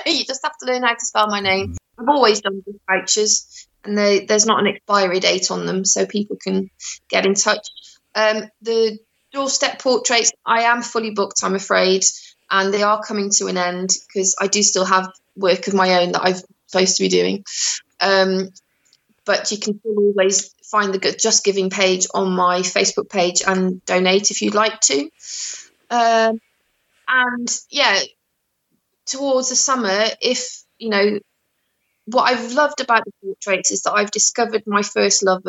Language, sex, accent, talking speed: English, female, British, 180 wpm